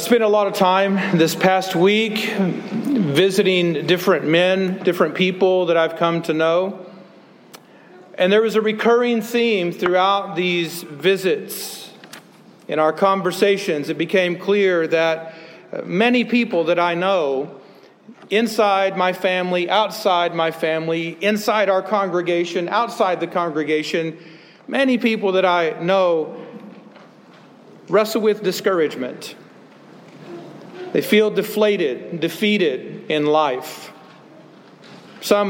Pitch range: 175-210 Hz